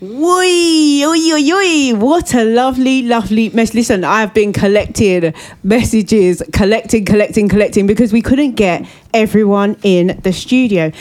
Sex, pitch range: female, 180-215 Hz